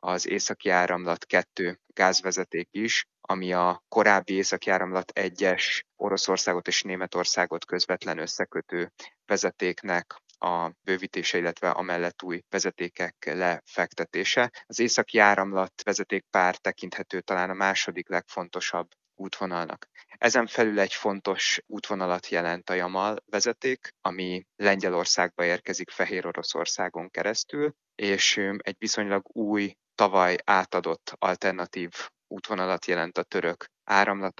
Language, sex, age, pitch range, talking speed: Hungarian, male, 30-49, 90-100 Hz, 110 wpm